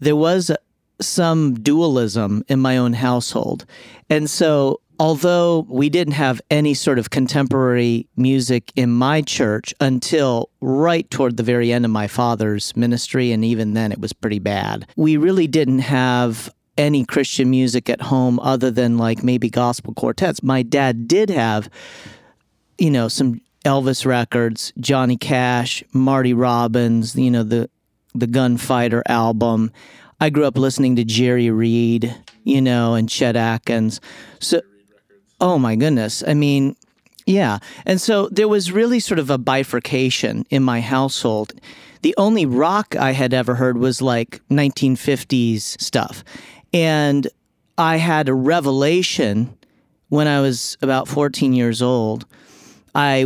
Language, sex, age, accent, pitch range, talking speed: English, male, 40-59, American, 120-140 Hz, 145 wpm